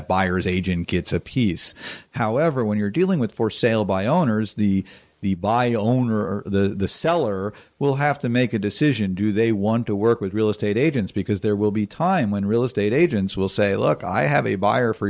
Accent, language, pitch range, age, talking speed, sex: American, English, 100-115 Hz, 40-59, 210 wpm, male